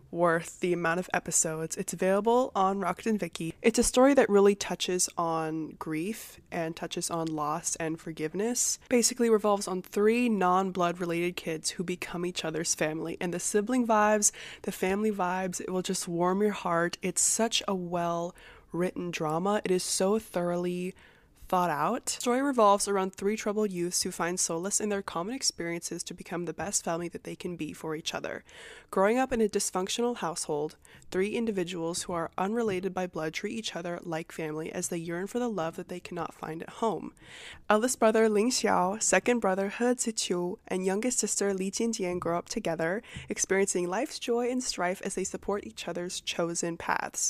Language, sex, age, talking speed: English, female, 20-39, 185 wpm